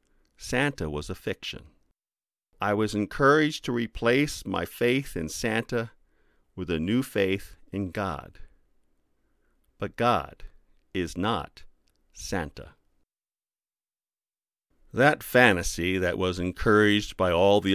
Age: 50-69